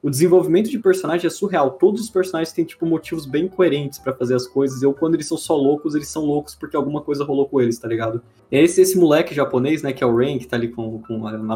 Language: Portuguese